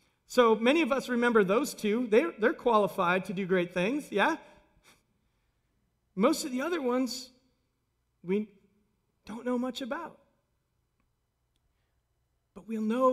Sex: male